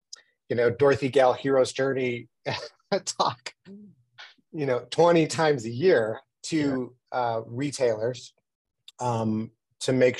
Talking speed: 110 wpm